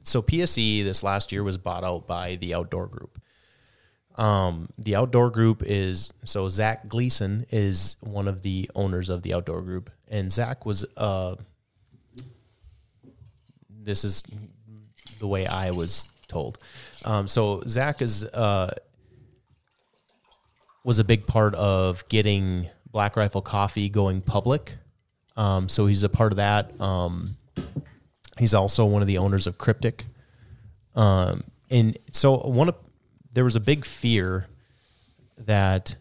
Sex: male